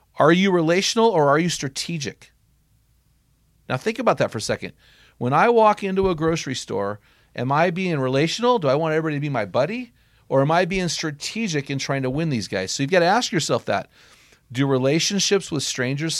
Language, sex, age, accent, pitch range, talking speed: English, male, 40-59, American, 110-165 Hz, 205 wpm